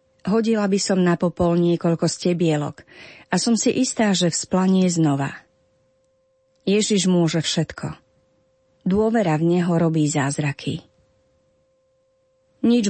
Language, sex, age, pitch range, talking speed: Slovak, female, 30-49, 155-200 Hz, 110 wpm